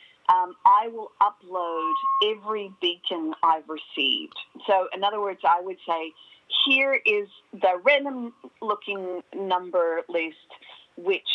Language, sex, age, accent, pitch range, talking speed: English, female, 50-69, American, 175-285 Hz, 115 wpm